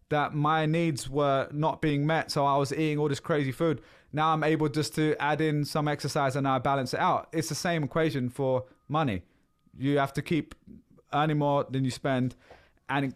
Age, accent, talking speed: 20-39, British, 205 wpm